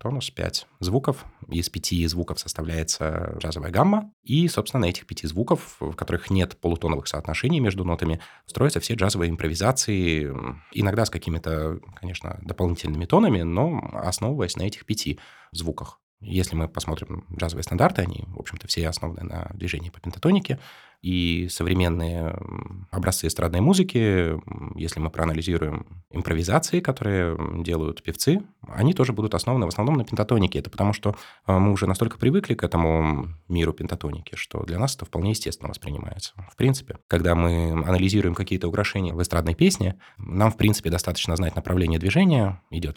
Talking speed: 150 wpm